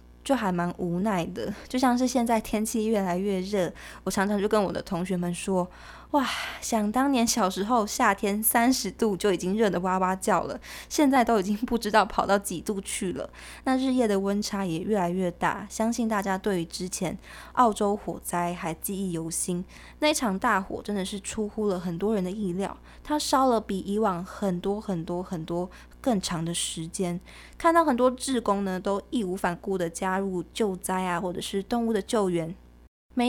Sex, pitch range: female, 180-230 Hz